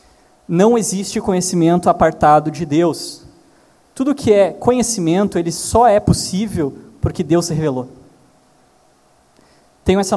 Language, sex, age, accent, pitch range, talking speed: Portuguese, male, 20-39, Brazilian, 140-180 Hz, 120 wpm